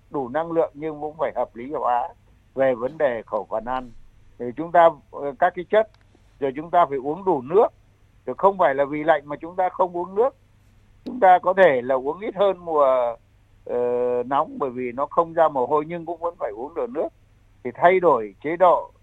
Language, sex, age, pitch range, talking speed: Vietnamese, male, 60-79, 115-160 Hz, 220 wpm